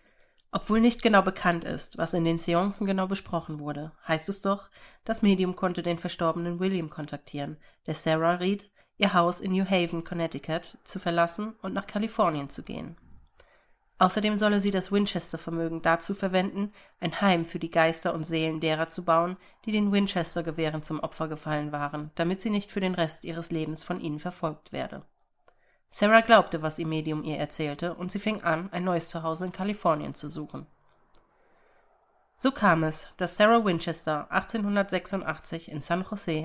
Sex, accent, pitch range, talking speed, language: female, German, 160-195 Hz, 170 wpm, German